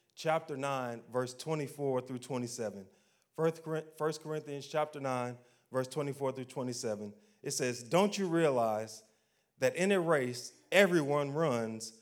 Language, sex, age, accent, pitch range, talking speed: English, male, 30-49, American, 130-175 Hz, 130 wpm